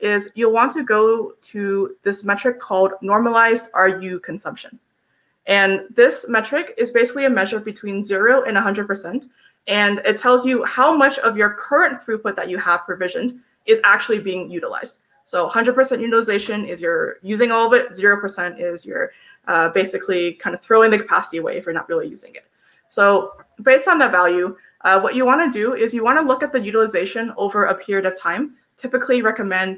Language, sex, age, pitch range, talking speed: English, female, 20-39, 190-250 Hz, 185 wpm